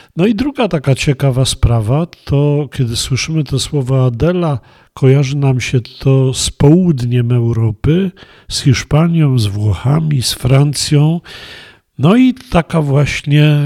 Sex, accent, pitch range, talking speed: male, native, 125-160 Hz, 125 wpm